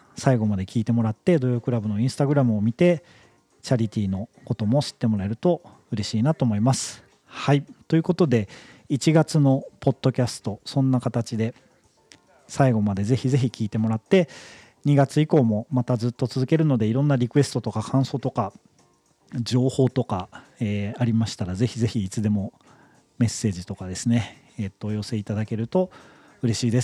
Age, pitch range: 40-59, 110-140 Hz